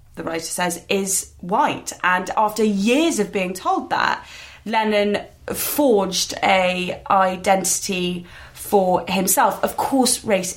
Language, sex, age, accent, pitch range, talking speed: English, female, 20-39, British, 180-215 Hz, 120 wpm